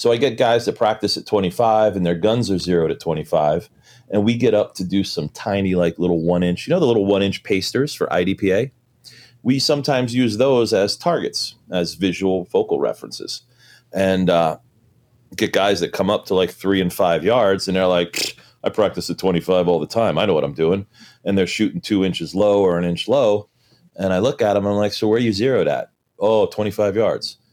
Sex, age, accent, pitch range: male, 30-49, American, 90-120 Hz